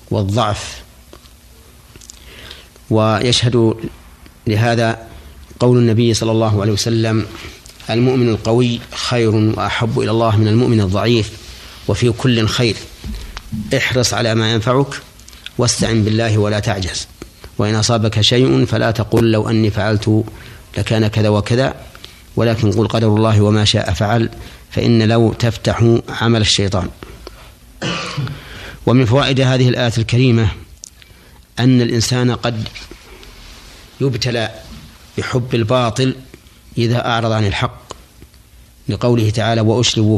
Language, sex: Arabic, male